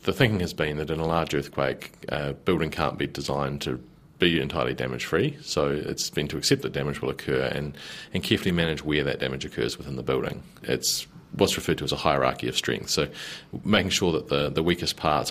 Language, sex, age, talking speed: English, male, 30-49, 220 wpm